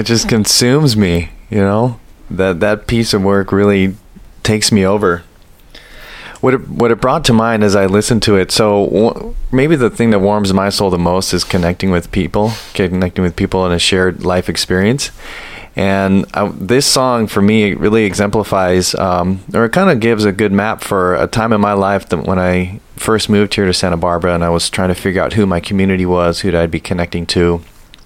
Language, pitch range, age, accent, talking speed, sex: English, 90-105 Hz, 30-49, American, 210 wpm, male